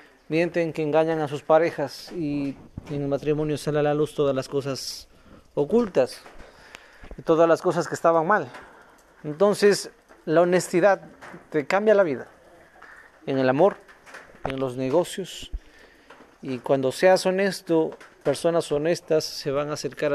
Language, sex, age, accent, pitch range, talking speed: Spanish, male, 40-59, Mexican, 145-180 Hz, 145 wpm